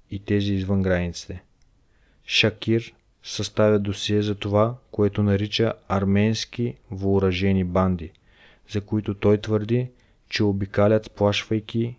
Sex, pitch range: male, 100-110 Hz